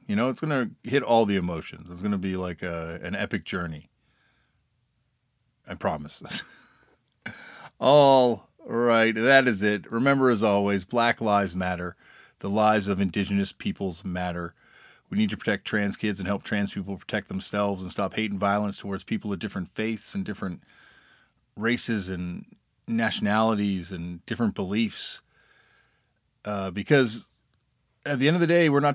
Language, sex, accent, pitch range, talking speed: English, male, American, 100-120 Hz, 160 wpm